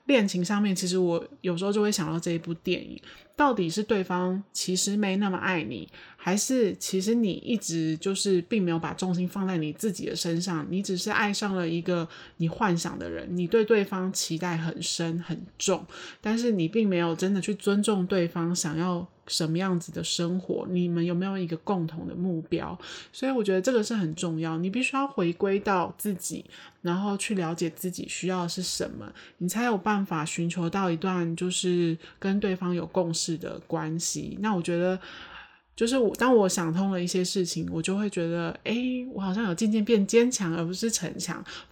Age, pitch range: 20-39, 170-210 Hz